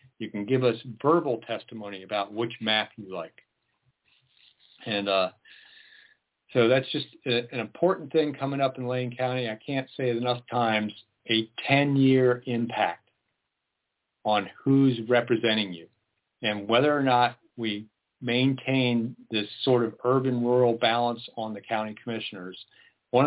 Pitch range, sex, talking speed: 110-130 Hz, male, 140 wpm